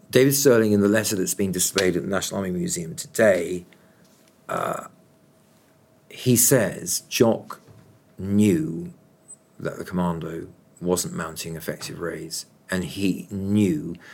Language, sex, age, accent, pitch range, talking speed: English, male, 50-69, British, 95-120 Hz, 125 wpm